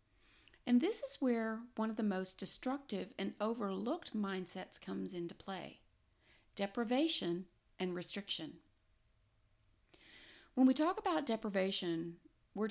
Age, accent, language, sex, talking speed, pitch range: 40-59, American, English, female, 115 wpm, 185-250 Hz